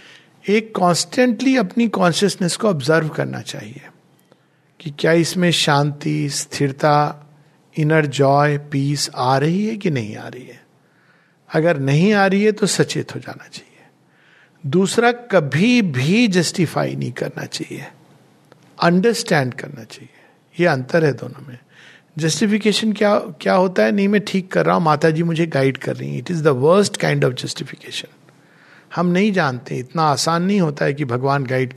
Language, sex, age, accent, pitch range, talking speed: Hindi, male, 50-69, native, 150-195 Hz, 155 wpm